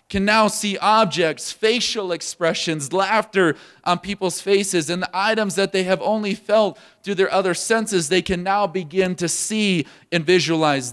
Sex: male